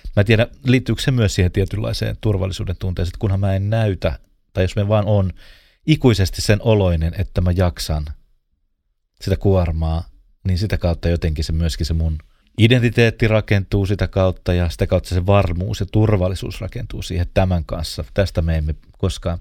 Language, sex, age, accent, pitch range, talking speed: Finnish, male, 30-49, native, 85-110 Hz, 165 wpm